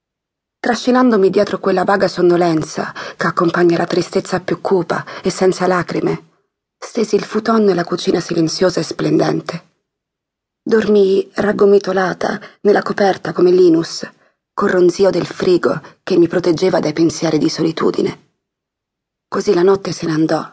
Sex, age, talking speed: female, 30-49, 130 wpm